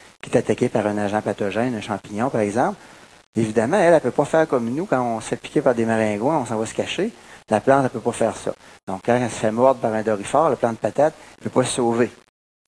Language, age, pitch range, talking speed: French, 30-49, 110-150 Hz, 270 wpm